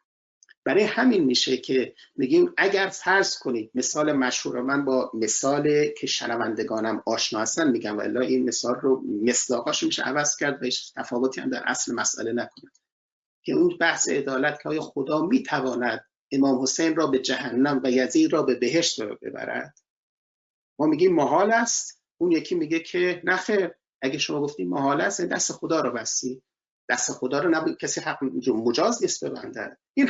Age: 30-49